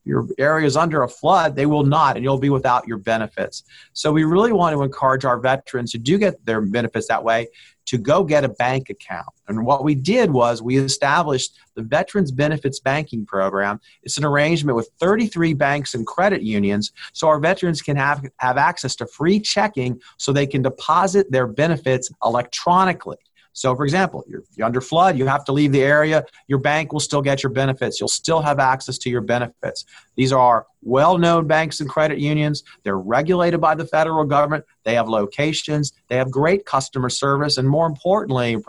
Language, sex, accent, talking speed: English, male, American, 195 wpm